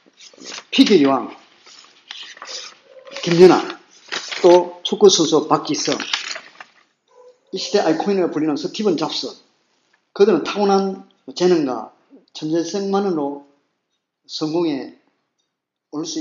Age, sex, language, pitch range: 40-59, male, Korean, 145-230 Hz